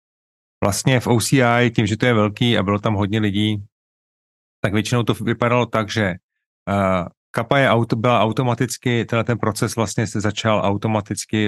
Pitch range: 100-115 Hz